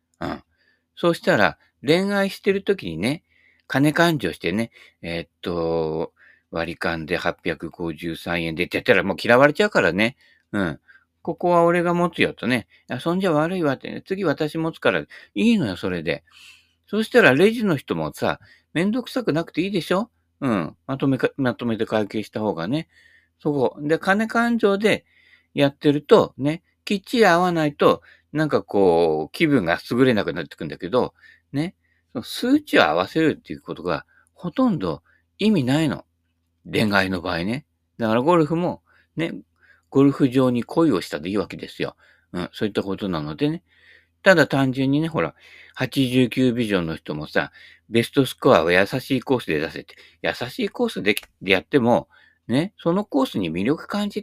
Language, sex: Japanese, male